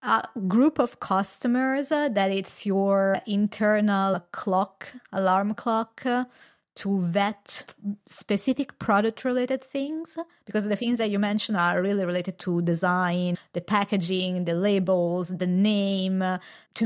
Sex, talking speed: female, 135 wpm